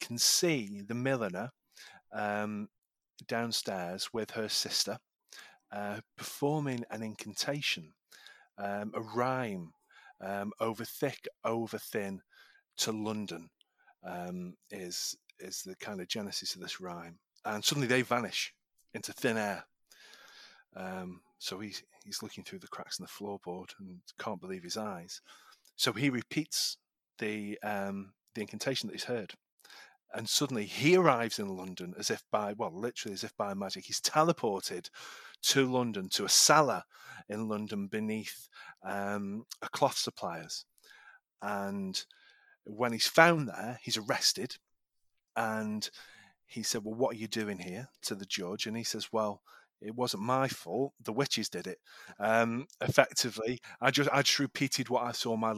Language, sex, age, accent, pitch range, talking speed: English, male, 30-49, British, 100-130 Hz, 150 wpm